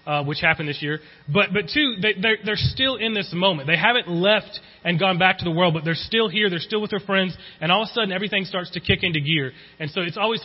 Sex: male